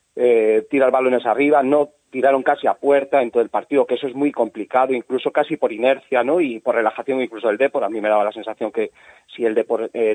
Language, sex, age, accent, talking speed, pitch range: Spanish, male, 30-49, Spanish, 235 wpm, 125-165 Hz